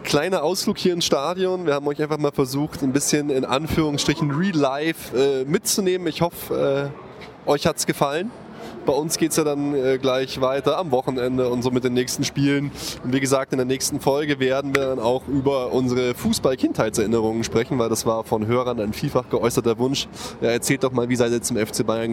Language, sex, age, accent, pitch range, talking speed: German, male, 20-39, German, 120-140 Hz, 200 wpm